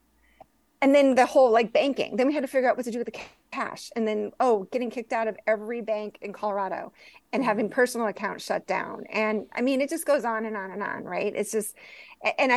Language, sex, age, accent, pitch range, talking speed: English, female, 40-59, American, 210-260 Hz, 240 wpm